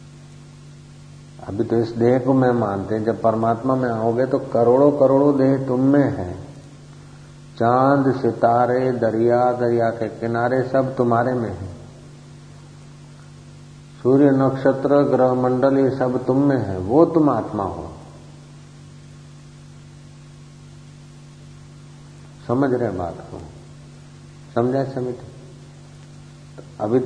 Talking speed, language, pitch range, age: 105 wpm, Hindi, 115-140 Hz, 50-69